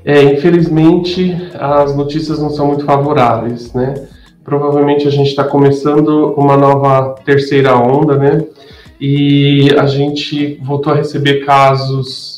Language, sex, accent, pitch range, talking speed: Portuguese, male, Brazilian, 130-145 Hz, 125 wpm